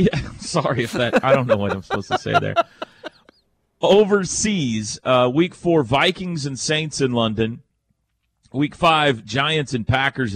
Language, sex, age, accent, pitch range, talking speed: English, male, 40-59, American, 100-145 Hz, 160 wpm